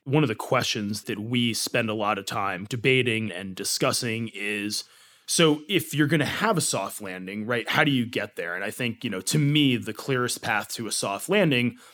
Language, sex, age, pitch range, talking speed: English, male, 30-49, 110-135 Hz, 220 wpm